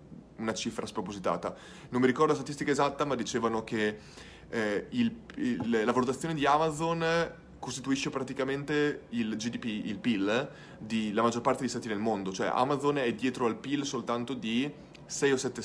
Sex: male